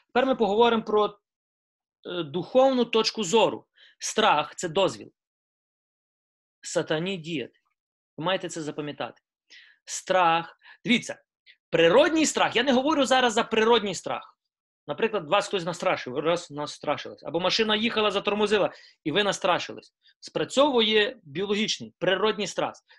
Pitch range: 165-235 Hz